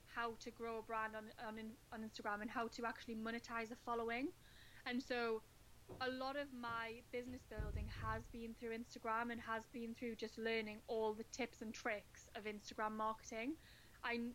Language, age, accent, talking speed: English, 10-29, British, 180 wpm